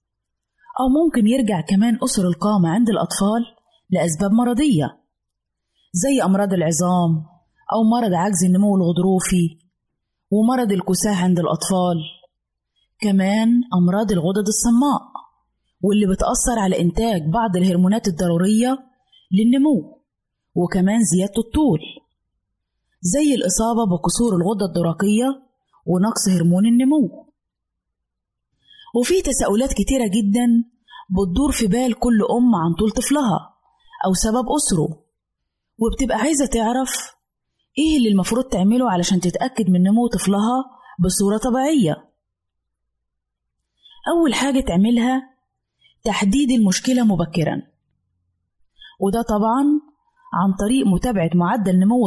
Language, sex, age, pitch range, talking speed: Arabic, female, 20-39, 180-250 Hz, 100 wpm